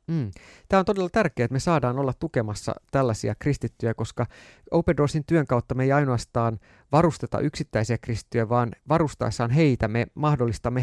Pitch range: 115-145 Hz